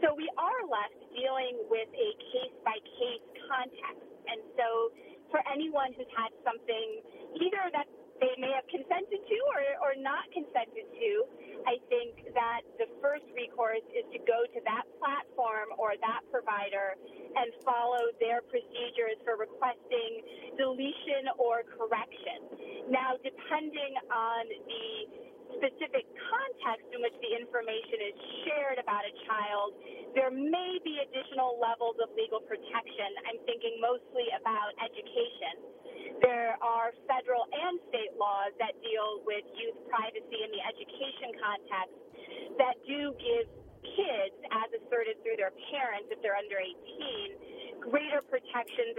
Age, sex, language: 30-49, female, English